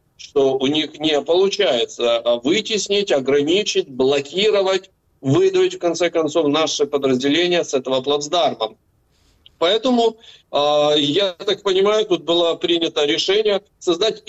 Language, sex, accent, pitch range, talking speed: Ukrainian, male, native, 140-195 Hz, 110 wpm